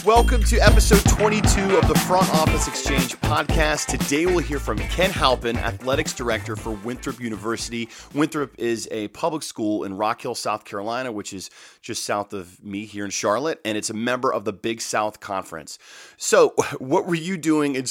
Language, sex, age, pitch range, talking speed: English, male, 30-49, 100-125 Hz, 185 wpm